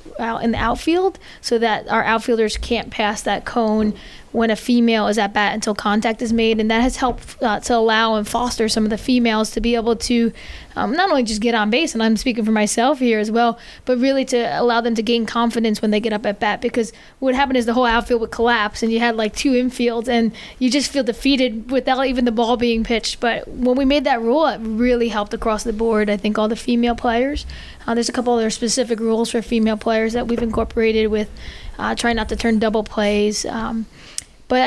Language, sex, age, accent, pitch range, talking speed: English, female, 20-39, American, 220-250 Hz, 230 wpm